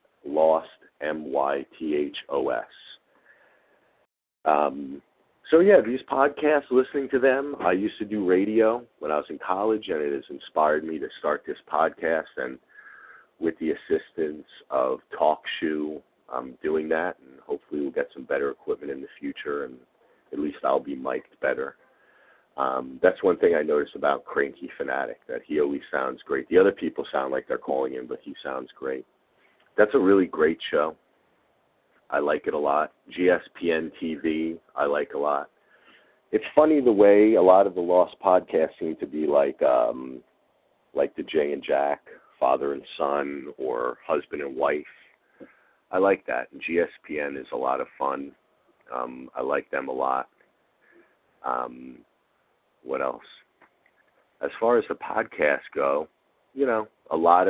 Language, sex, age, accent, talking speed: English, male, 40-59, American, 160 wpm